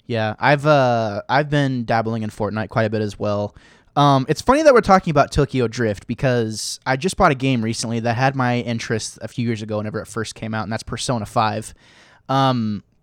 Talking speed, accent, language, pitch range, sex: 215 wpm, American, English, 115-145 Hz, male